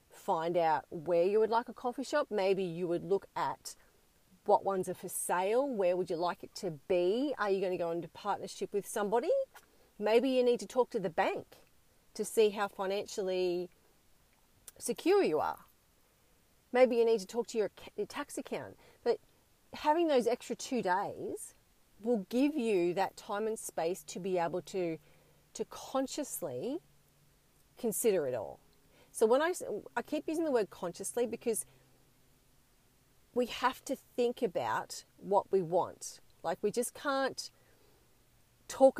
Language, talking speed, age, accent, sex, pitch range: English, 160 wpm, 40-59, Australian, female, 190-255 Hz